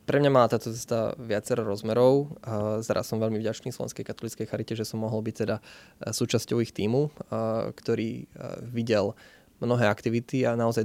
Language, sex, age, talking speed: Slovak, male, 20-39, 160 wpm